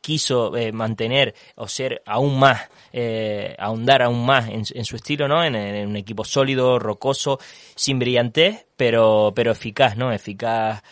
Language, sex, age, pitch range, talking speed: Spanish, male, 20-39, 105-125 Hz, 160 wpm